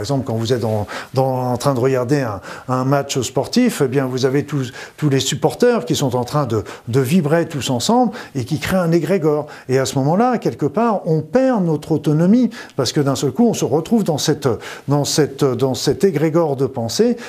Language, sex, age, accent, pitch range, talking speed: French, male, 50-69, French, 130-170 Hz, 225 wpm